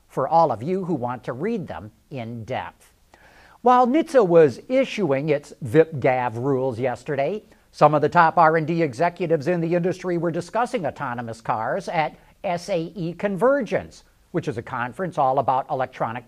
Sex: male